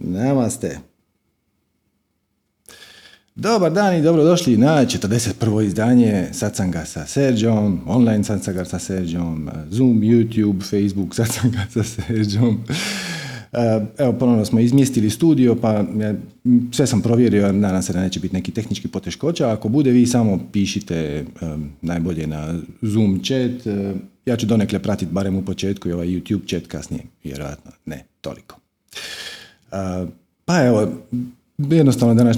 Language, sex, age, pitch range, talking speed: Croatian, male, 40-59, 95-130 Hz, 120 wpm